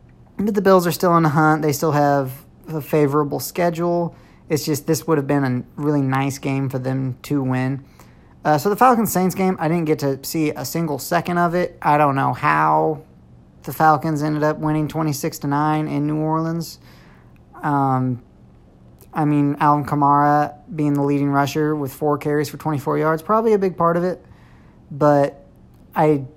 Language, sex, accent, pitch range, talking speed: English, male, American, 135-165 Hz, 180 wpm